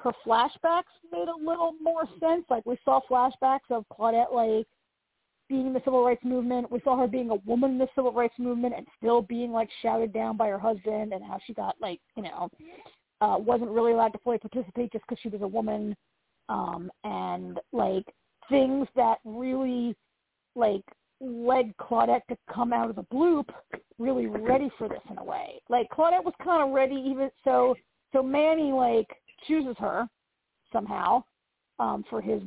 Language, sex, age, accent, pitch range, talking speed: English, female, 40-59, American, 225-275 Hz, 185 wpm